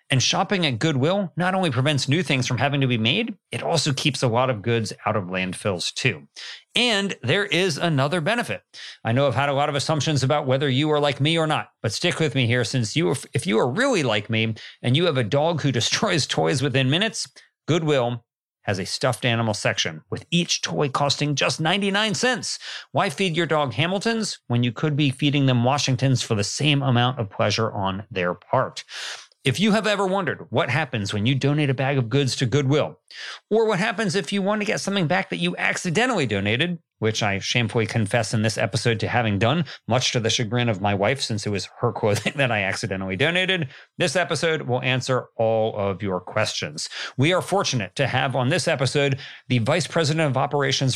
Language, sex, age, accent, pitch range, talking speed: English, male, 40-59, American, 120-160 Hz, 215 wpm